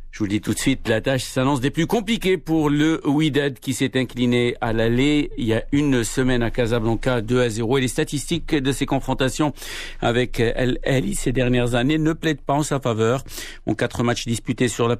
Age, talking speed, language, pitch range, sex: 50-69, 220 wpm, Arabic, 115-140 Hz, male